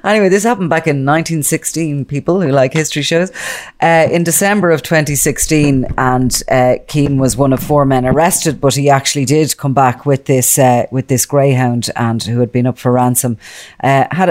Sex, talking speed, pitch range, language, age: female, 190 wpm, 130-145 Hz, English, 30-49